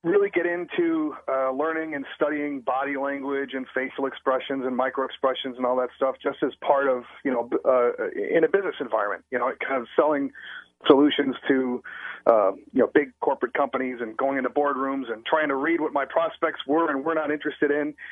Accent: American